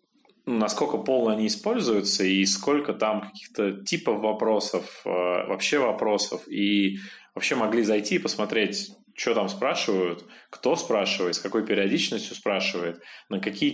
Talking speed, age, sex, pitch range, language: 125 wpm, 20-39, male, 100-140 Hz, Russian